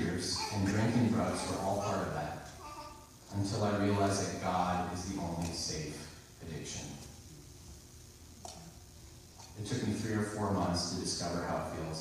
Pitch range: 90-110 Hz